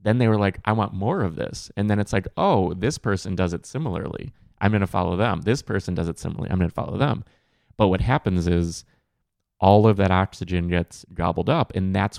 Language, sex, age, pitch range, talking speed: English, male, 20-39, 90-110 Hz, 230 wpm